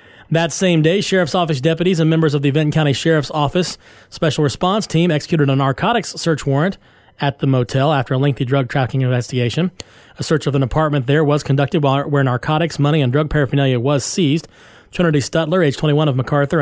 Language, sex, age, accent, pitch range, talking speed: English, male, 30-49, American, 135-165 Hz, 195 wpm